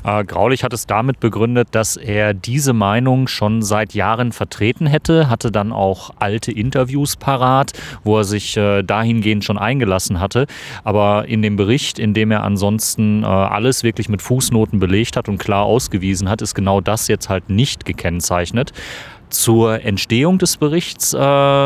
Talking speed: 165 wpm